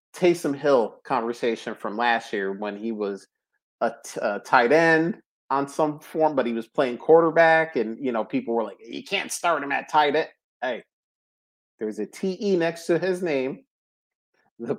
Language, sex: English, male